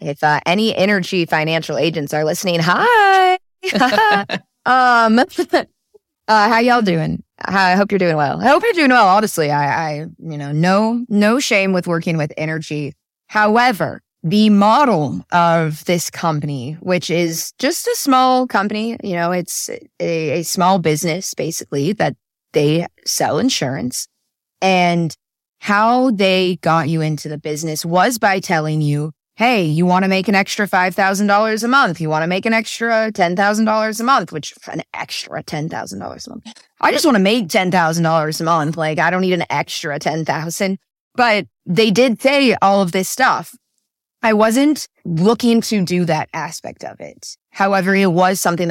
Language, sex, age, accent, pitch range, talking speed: English, female, 20-39, American, 160-220 Hz, 165 wpm